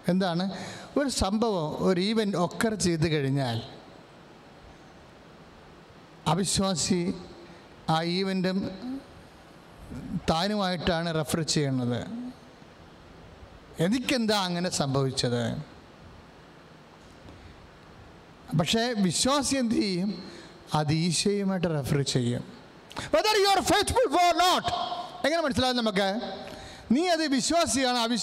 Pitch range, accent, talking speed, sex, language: 160-235 Hz, Indian, 60 wpm, male, English